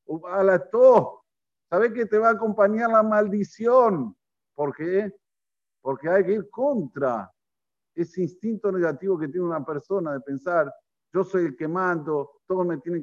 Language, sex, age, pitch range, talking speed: Spanish, male, 50-69, 145-195 Hz, 150 wpm